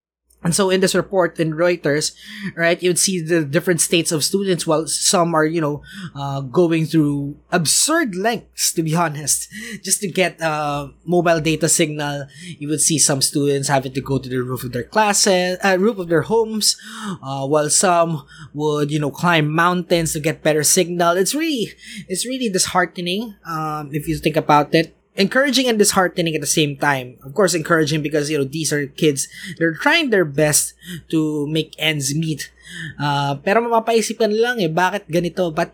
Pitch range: 145-180 Hz